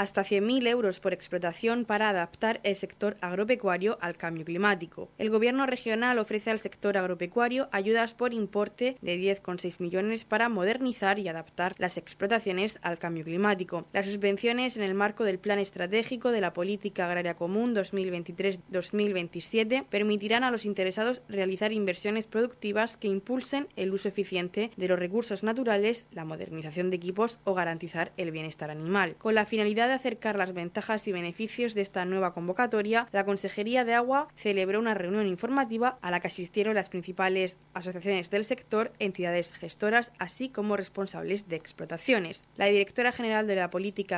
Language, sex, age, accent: Spanish, female, 20-39, Spanish